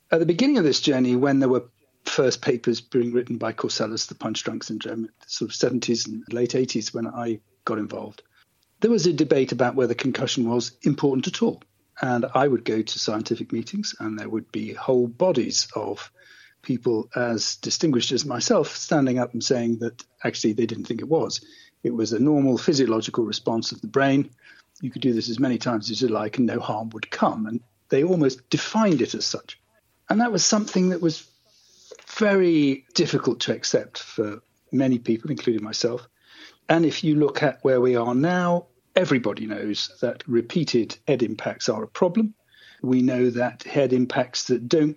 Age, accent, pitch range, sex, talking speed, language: 40-59, British, 115-165 Hz, male, 190 wpm, English